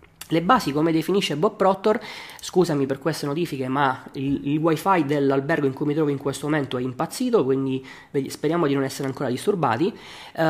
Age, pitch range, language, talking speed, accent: 20-39, 140-170 Hz, Italian, 185 wpm, native